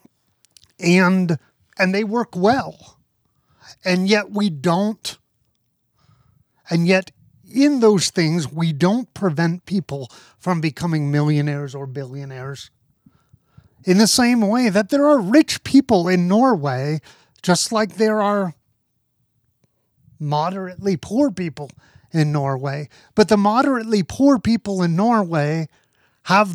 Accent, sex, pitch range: American, male, 145-215 Hz